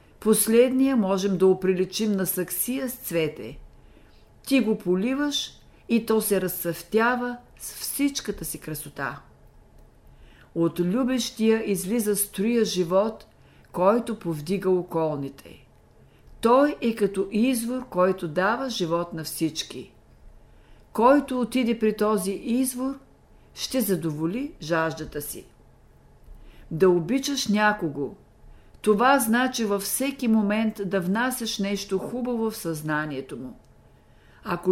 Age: 50-69